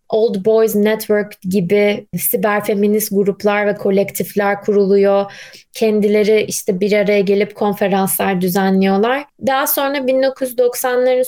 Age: 20-39